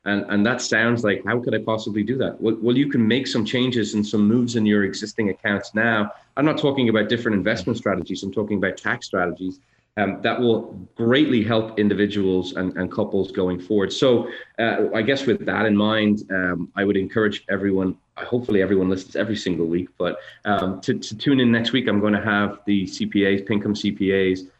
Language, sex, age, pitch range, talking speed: English, male, 20-39, 100-115 Hz, 205 wpm